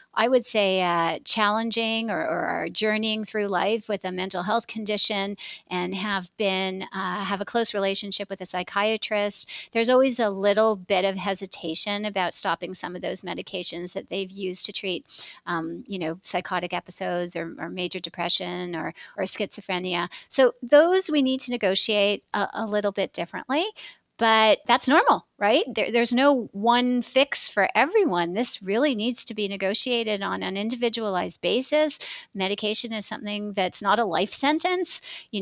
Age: 40-59